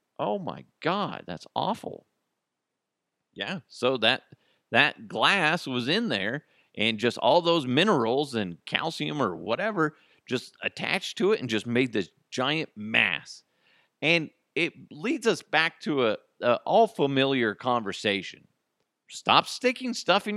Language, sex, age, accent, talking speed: English, male, 40-59, American, 135 wpm